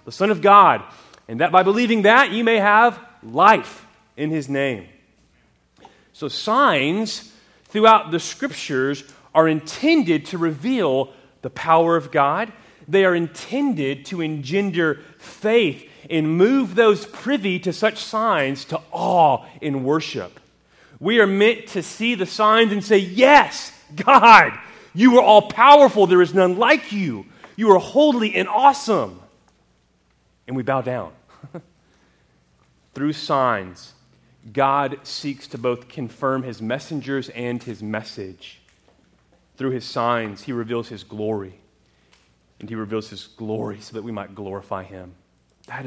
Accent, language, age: American, English, 30-49